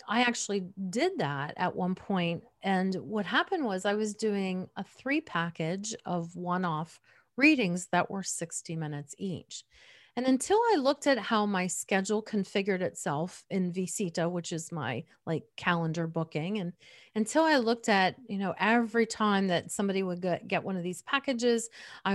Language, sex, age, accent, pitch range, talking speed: English, female, 40-59, American, 175-240 Hz, 165 wpm